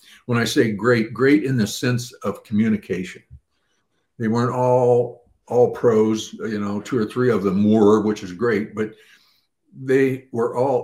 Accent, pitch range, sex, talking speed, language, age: American, 110-135 Hz, male, 165 wpm, English, 60-79